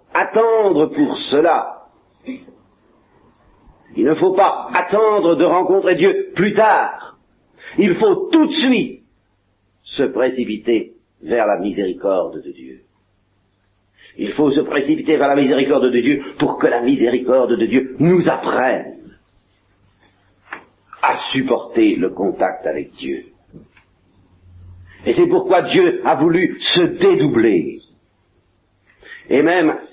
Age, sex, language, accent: 60-79, male, French, French